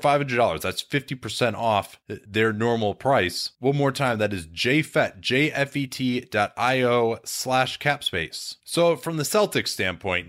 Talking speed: 140 wpm